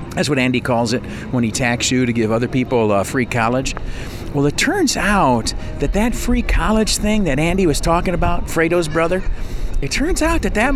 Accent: American